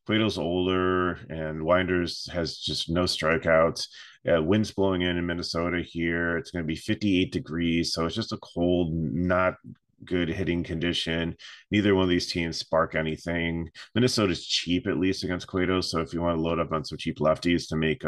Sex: male